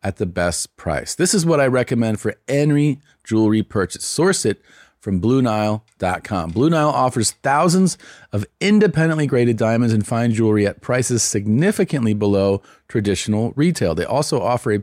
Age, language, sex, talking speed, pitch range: 40-59, English, male, 155 wpm, 100-135 Hz